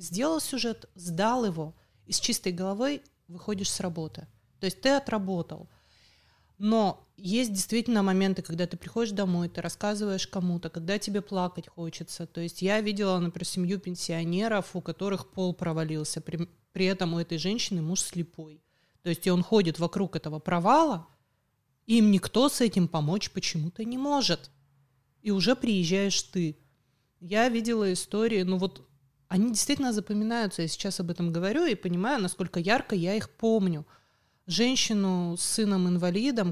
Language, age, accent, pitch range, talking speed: Russian, 30-49, native, 170-205 Hz, 150 wpm